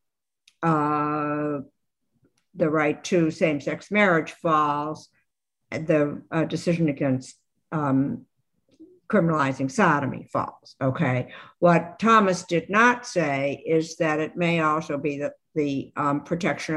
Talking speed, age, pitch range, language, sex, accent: 110 wpm, 60-79, 145-180 Hz, English, female, American